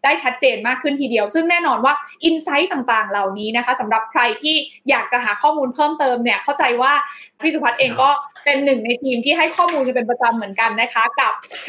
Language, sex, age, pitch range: Thai, female, 20-39, 245-300 Hz